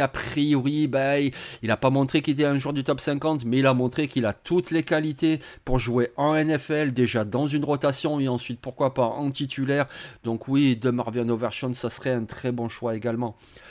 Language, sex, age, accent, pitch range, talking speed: French, male, 30-49, French, 130-175 Hz, 215 wpm